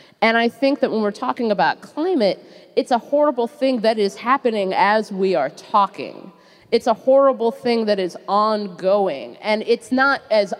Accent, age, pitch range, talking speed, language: American, 30-49, 175-215 Hz, 175 wpm, English